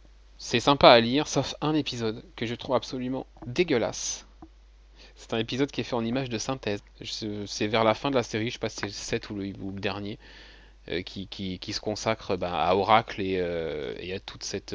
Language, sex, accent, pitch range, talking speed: French, male, French, 95-125 Hz, 230 wpm